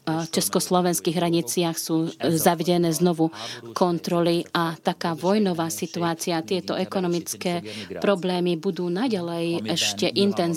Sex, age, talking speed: female, 30-49, 90 wpm